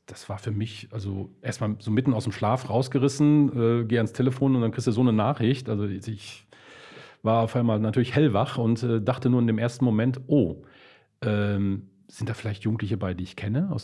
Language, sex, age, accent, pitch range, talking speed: German, male, 40-59, German, 100-125 Hz, 215 wpm